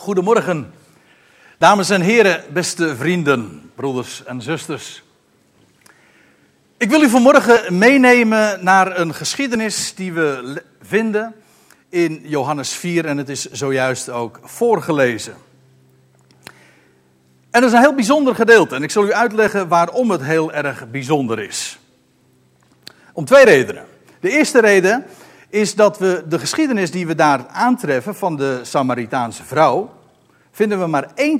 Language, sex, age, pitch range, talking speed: Dutch, male, 60-79, 145-230 Hz, 135 wpm